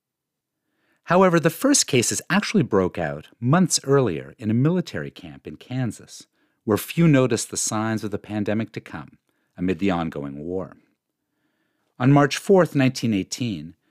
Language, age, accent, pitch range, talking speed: English, 50-69, American, 95-150 Hz, 140 wpm